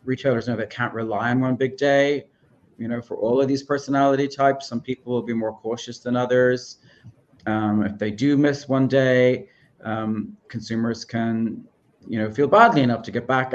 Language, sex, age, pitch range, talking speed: English, male, 30-49, 110-135 Hz, 190 wpm